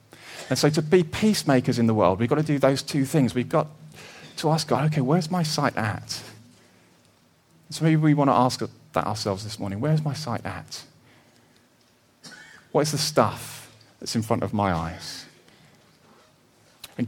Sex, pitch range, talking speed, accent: male, 115-150 Hz, 175 wpm, British